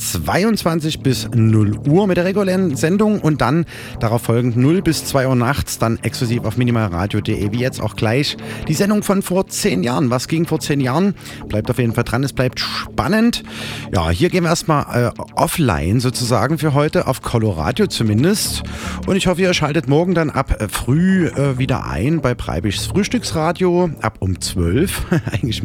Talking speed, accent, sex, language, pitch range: 180 wpm, German, male, German, 110-170 Hz